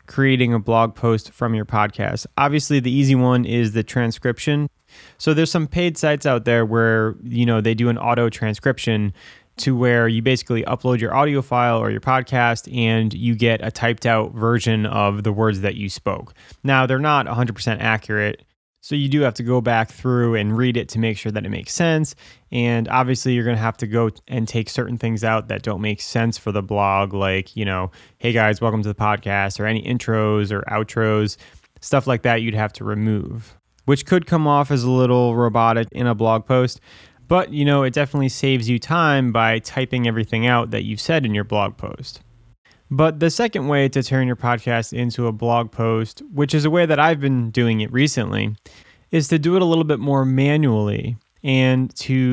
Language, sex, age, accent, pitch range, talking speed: English, male, 20-39, American, 110-135 Hz, 210 wpm